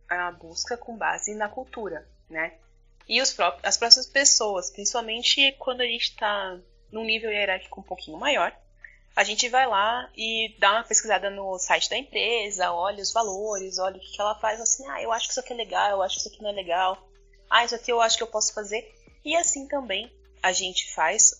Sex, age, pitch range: female, 20-39, 185-235 Hz